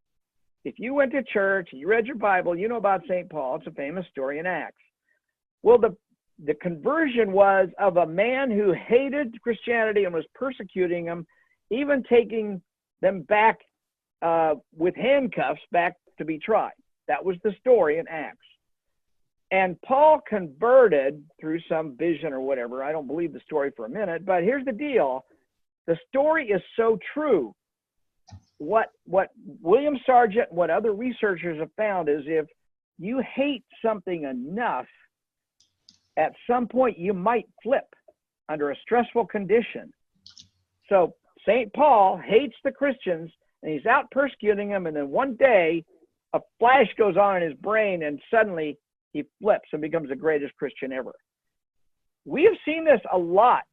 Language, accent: English, American